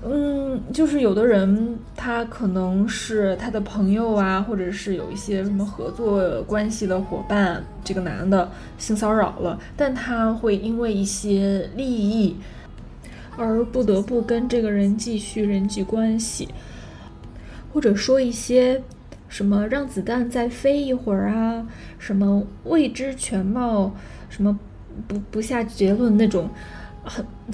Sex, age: female, 20-39